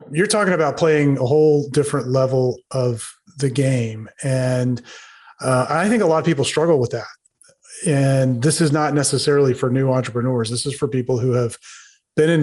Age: 30-49